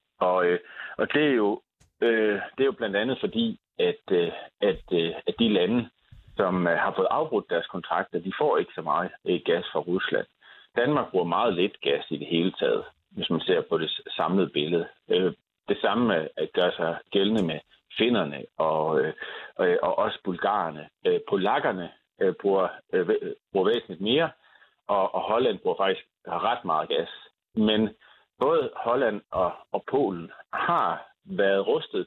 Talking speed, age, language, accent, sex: 150 wpm, 40-59, Danish, native, male